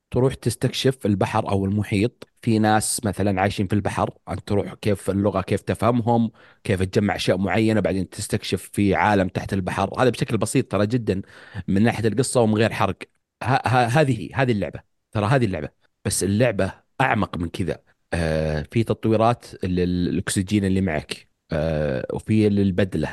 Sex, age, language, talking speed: male, 30-49, Arabic, 160 wpm